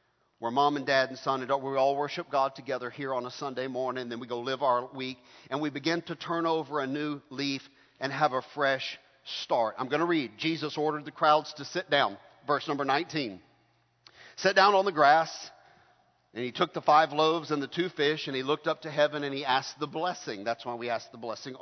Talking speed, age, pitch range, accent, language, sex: 235 wpm, 50-69, 140-175 Hz, American, English, male